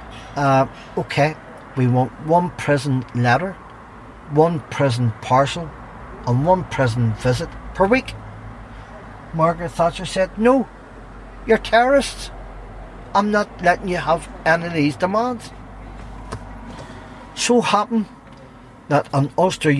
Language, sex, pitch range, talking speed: German, male, 120-160 Hz, 110 wpm